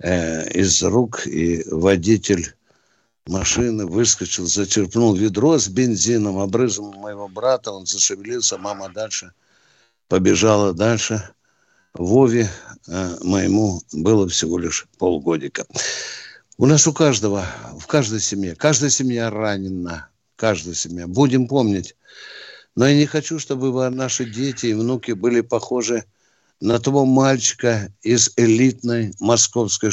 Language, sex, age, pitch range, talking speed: Russian, male, 60-79, 105-135 Hz, 110 wpm